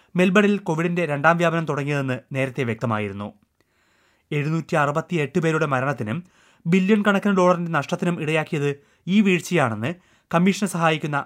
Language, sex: Malayalam, male